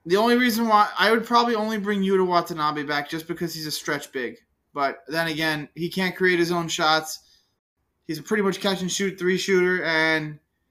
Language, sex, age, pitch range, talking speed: English, male, 20-39, 145-180 Hz, 215 wpm